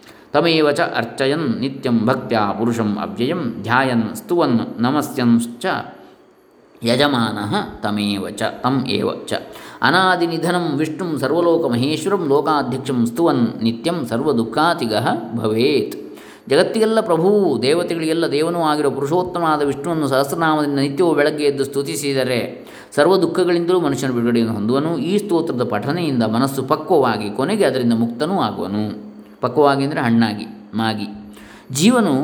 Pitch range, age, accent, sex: 120-160 Hz, 20-39, native, male